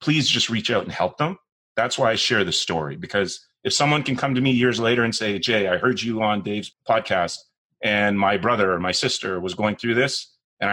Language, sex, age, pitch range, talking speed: English, male, 30-49, 105-135 Hz, 235 wpm